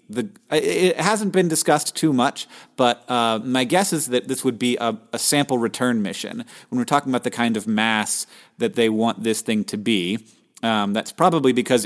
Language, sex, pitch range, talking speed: English, male, 110-140 Hz, 195 wpm